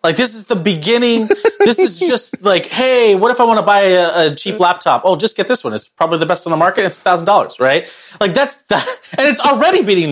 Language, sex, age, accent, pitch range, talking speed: English, male, 30-49, American, 120-180 Hz, 255 wpm